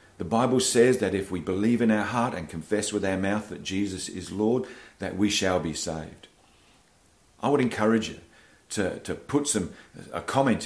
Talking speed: 190 wpm